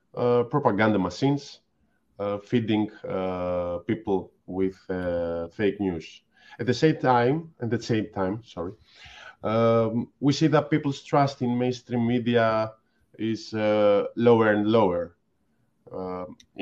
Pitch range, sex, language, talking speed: 95-120 Hz, male, Greek, 125 wpm